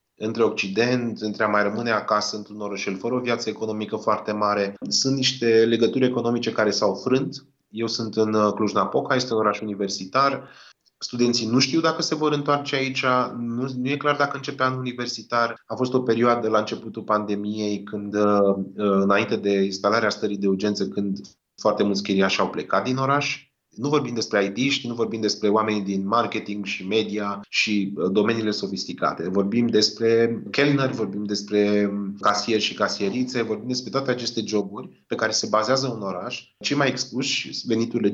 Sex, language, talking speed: male, Romanian, 165 wpm